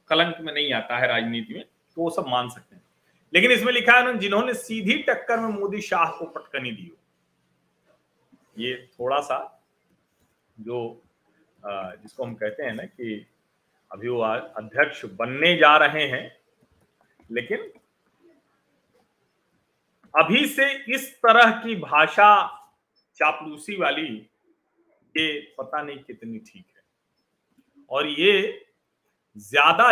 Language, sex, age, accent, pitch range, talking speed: Hindi, male, 40-59, native, 145-230 Hz, 95 wpm